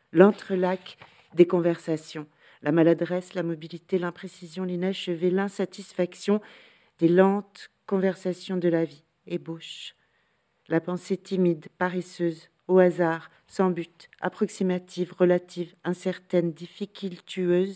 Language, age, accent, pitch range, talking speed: French, 50-69, French, 165-190 Hz, 100 wpm